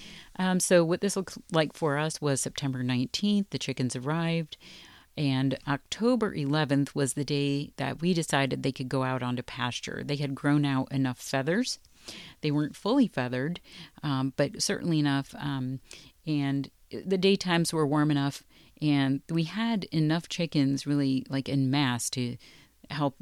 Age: 40-59